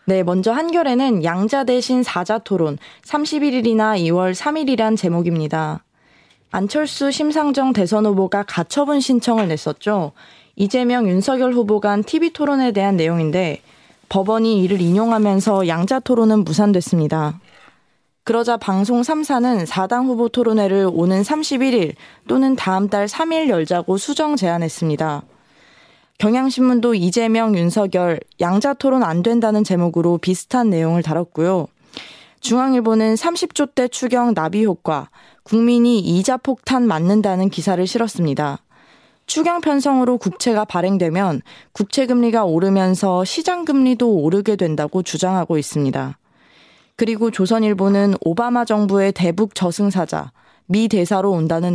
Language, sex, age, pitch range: Korean, female, 20-39, 180-245 Hz